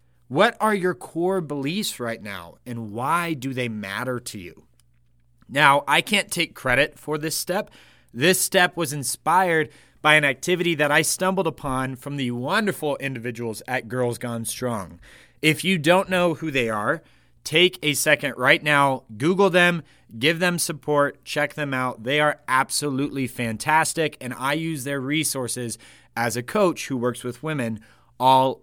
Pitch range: 120-165 Hz